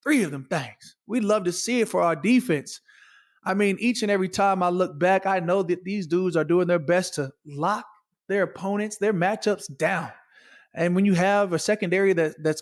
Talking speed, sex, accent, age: 210 wpm, male, American, 20-39